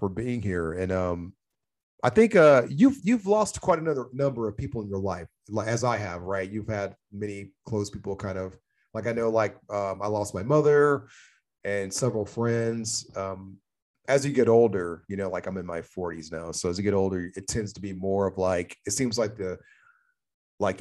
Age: 30-49